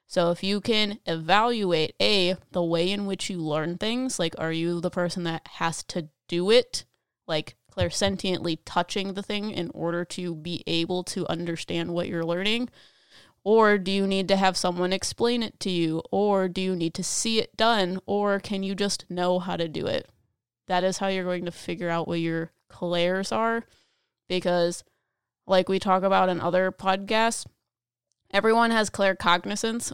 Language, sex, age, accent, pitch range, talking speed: English, female, 20-39, American, 175-200 Hz, 180 wpm